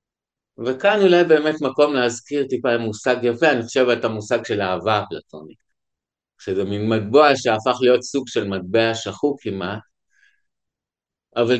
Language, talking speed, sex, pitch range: Hebrew, 135 wpm, male, 110-140 Hz